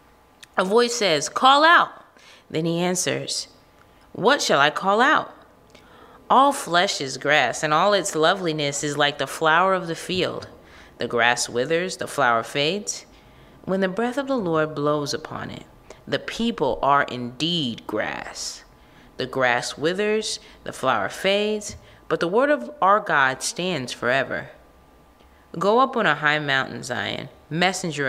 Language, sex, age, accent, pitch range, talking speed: English, female, 30-49, American, 145-210 Hz, 150 wpm